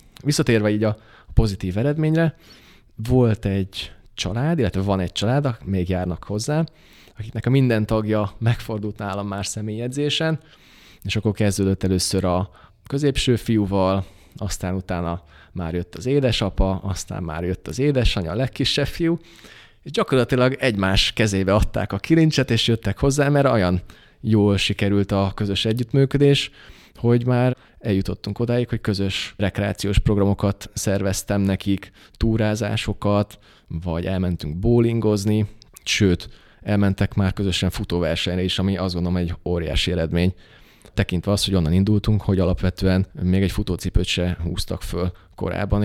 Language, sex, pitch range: Hungarian, male, 95-115 Hz